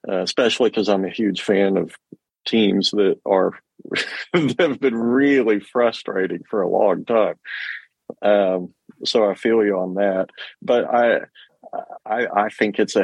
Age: 40-59